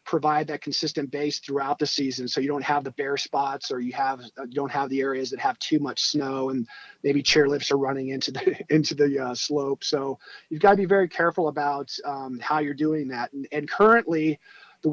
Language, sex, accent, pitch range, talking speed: English, male, American, 140-165 Hz, 220 wpm